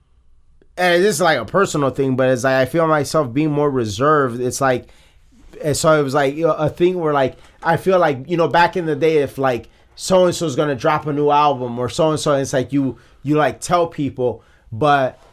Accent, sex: American, male